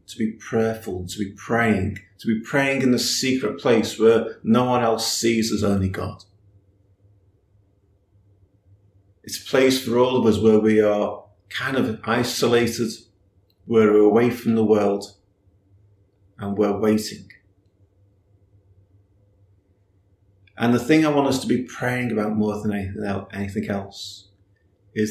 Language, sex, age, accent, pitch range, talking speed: English, male, 40-59, British, 100-130 Hz, 140 wpm